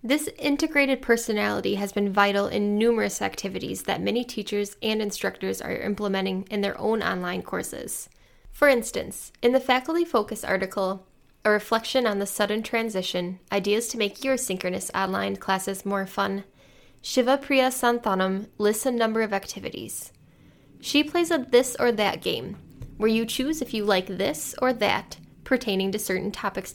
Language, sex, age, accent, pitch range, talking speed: English, female, 10-29, American, 195-240 Hz, 160 wpm